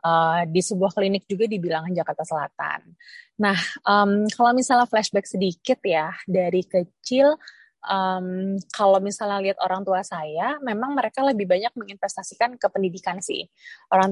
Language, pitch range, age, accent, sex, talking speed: Indonesian, 190-230 Hz, 20-39, native, female, 145 wpm